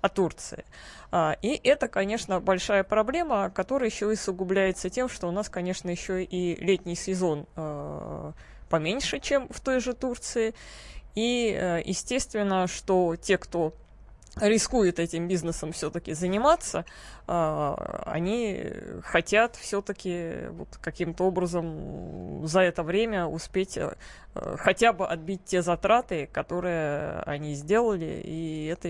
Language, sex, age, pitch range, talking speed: Russian, female, 20-39, 165-210 Hz, 110 wpm